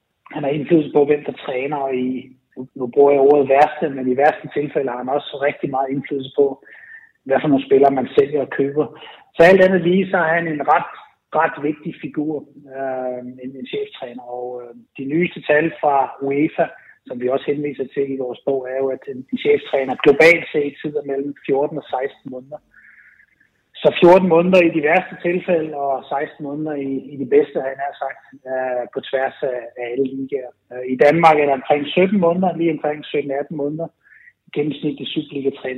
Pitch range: 135-165 Hz